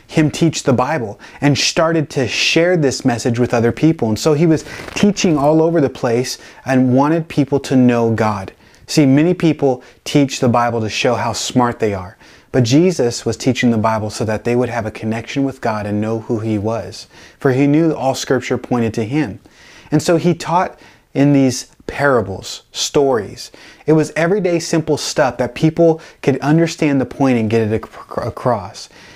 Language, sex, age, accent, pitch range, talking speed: English, male, 30-49, American, 115-155 Hz, 185 wpm